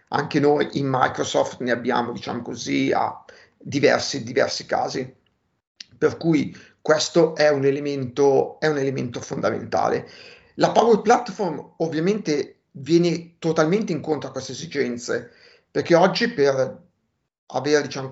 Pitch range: 145-185 Hz